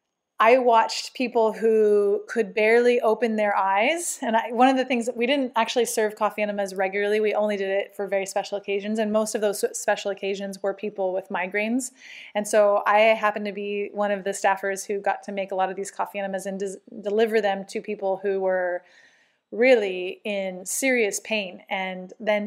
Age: 20-39